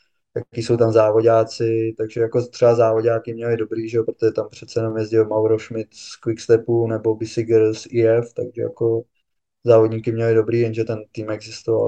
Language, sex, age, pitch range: Czech, male, 20-39, 110-115 Hz